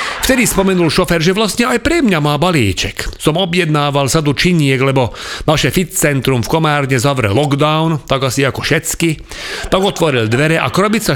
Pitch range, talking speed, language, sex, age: 130-185 Hz, 165 wpm, Slovak, male, 40-59